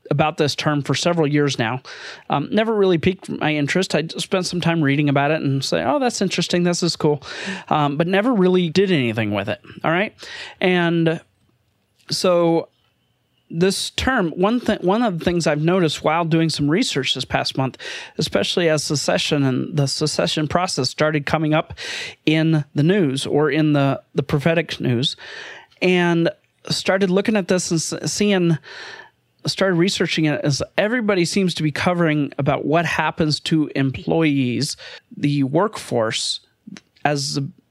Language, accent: English, American